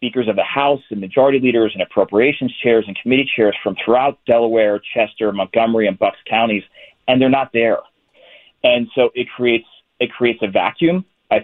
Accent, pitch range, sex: American, 105-125 Hz, male